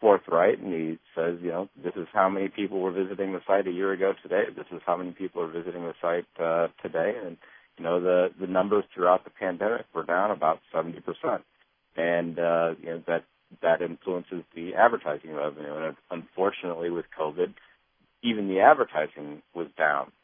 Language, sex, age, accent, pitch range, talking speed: English, male, 40-59, American, 80-90 Hz, 185 wpm